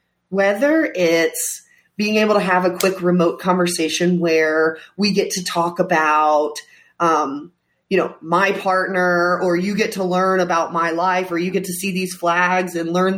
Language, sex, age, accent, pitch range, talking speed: English, female, 30-49, American, 165-205 Hz, 175 wpm